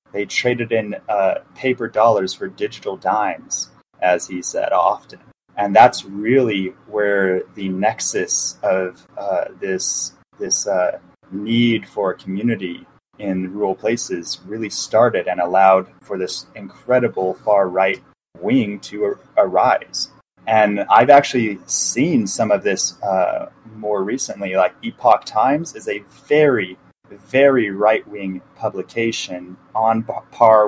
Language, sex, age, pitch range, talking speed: English, male, 30-49, 95-130 Hz, 125 wpm